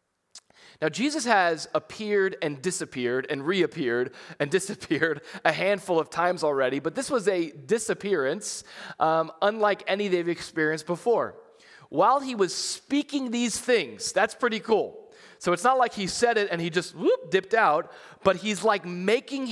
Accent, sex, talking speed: American, male, 160 wpm